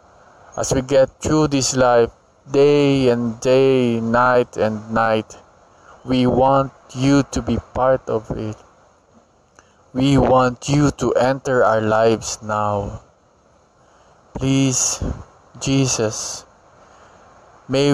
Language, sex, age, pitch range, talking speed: English, male, 20-39, 110-135 Hz, 105 wpm